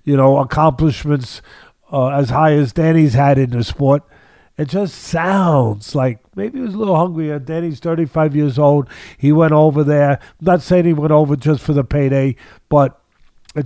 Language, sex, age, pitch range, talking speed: English, male, 50-69, 135-175 Hz, 185 wpm